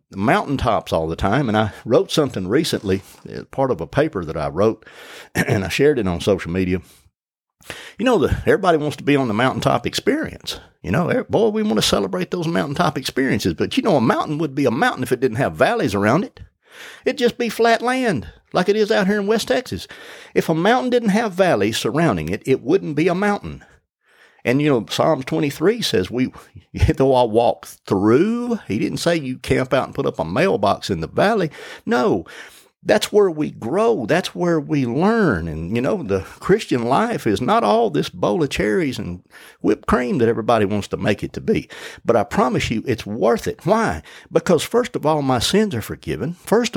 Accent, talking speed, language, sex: American, 210 wpm, English, male